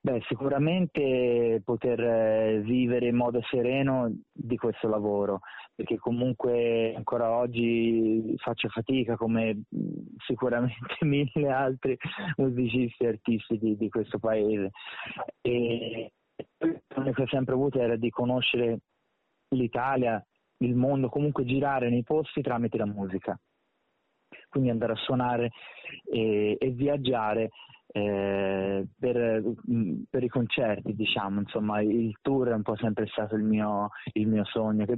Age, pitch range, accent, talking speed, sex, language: 30-49, 115-130 Hz, native, 125 wpm, male, Italian